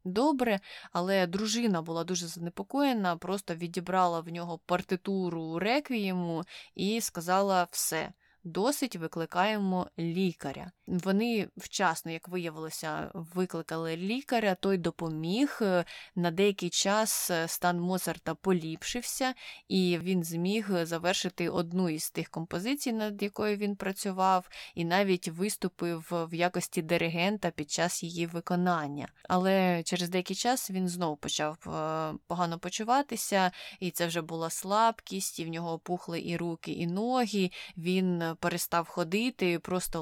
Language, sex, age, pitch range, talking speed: Ukrainian, female, 20-39, 170-195 Hz, 120 wpm